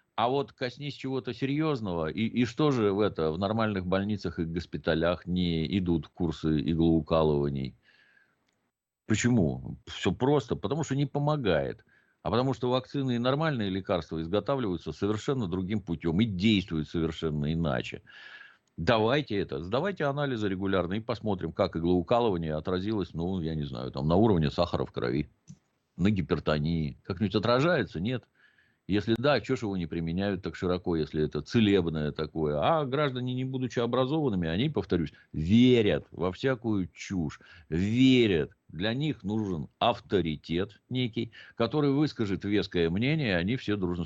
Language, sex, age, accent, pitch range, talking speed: Russian, male, 50-69, native, 80-115 Hz, 145 wpm